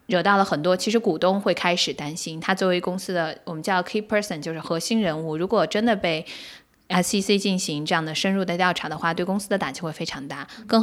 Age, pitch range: 20-39, 165-195 Hz